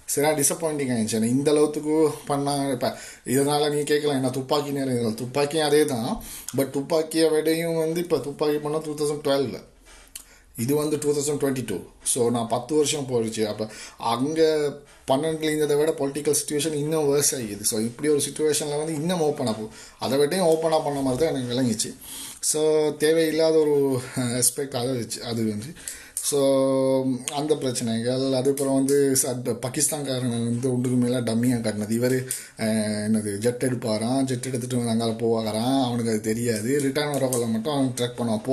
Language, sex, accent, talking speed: Tamil, male, native, 155 wpm